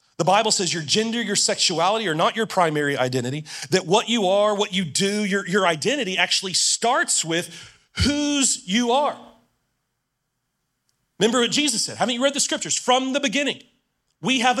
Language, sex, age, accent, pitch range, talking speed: English, male, 40-59, American, 180-245 Hz, 175 wpm